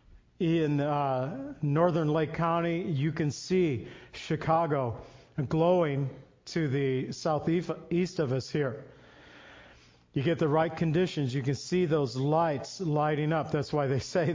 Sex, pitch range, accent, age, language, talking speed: male, 140-170 Hz, American, 50-69, English, 135 wpm